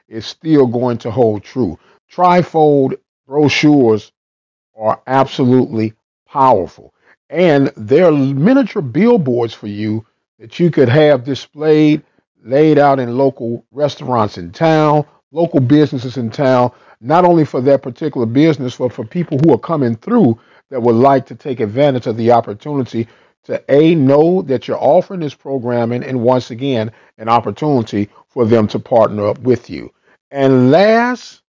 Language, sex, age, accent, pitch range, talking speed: English, male, 50-69, American, 120-155 Hz, 145 wpm